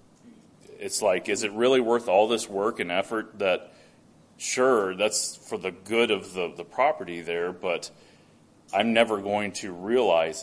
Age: 30-49